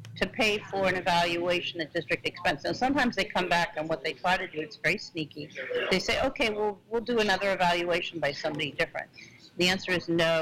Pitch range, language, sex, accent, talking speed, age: 160-200 Hz, English, female, American, 215 wpm, 50-69